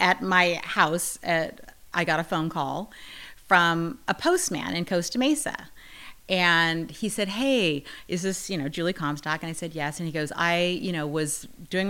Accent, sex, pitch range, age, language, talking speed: American, female, 155-190 Hz, 30-49, English, 185 wpm